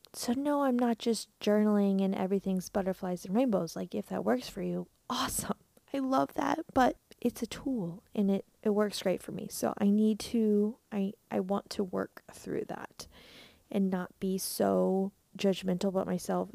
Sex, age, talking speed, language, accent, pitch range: female, 20-39, 180 wpm, English, American, 180-205 Hz